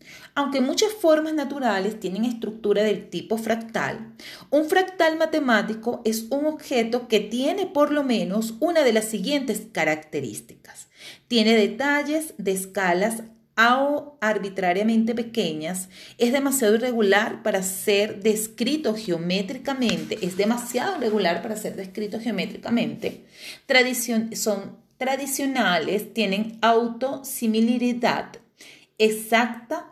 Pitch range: 205-260 Hz